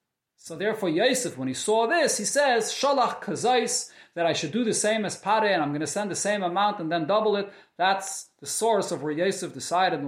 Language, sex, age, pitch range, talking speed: English, male, 30-49, 150-200 Hz, 220 wpm